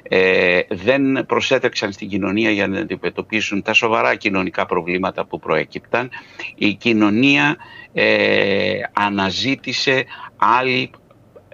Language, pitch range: Greek, 100-140 Hz